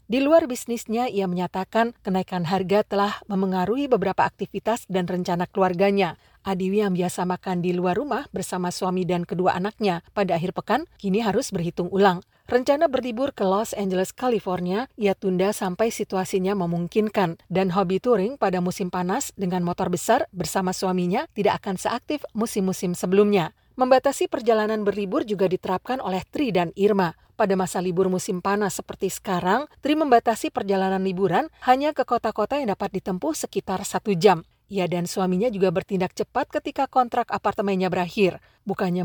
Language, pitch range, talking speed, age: Indonesian, 185-225 Hz, 155 wpm, 40-59